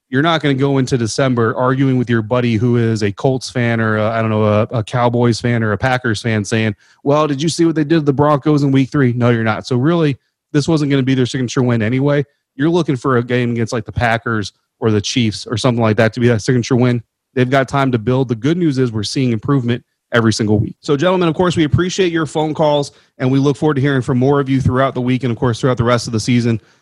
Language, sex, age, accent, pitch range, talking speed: English, male, 30-49, American, 120-145 Hz, 275 wpm